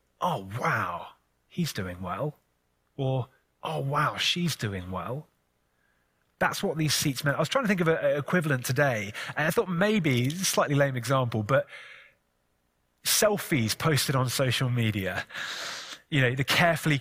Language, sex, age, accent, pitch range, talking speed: English, male, 30-49, British, 120-160 Hz, 160 wpm